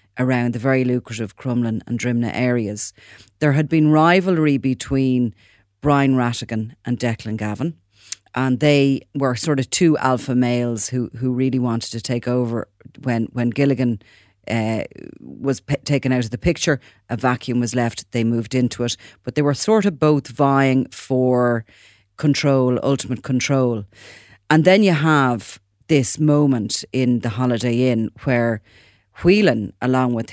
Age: 40-59